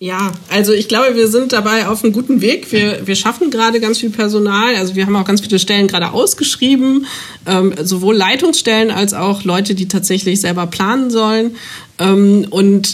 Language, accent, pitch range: German, German, 190-225 Hz